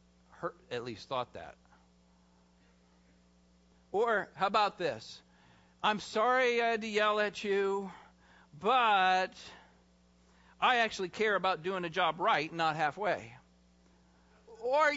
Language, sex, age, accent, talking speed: English, male, 50-69, American, 115 wpm